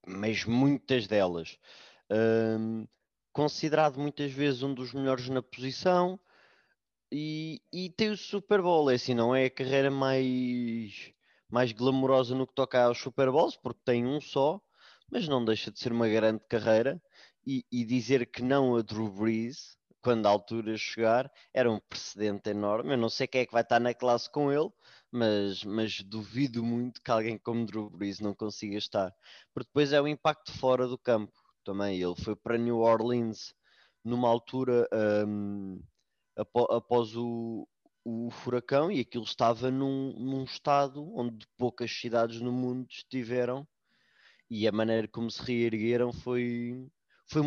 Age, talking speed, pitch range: 20-39, 160 wpm, 110-135 Hz